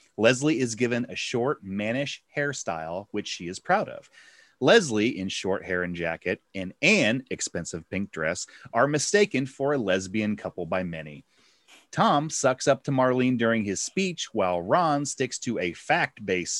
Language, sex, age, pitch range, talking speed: English, male, 30-49, 95-145 Hz, 165 wpm